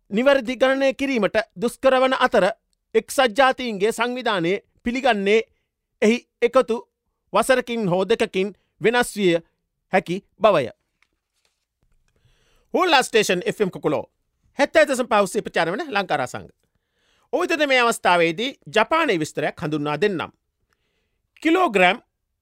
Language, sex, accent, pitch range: Japanese, male, Indian, 190-265 Hz